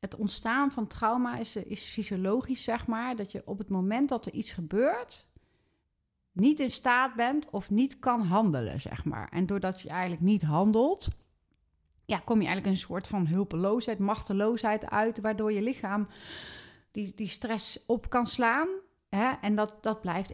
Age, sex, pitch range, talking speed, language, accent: 30-49, female, 170-215 Hz, 170 wpm, Dutch, Dutch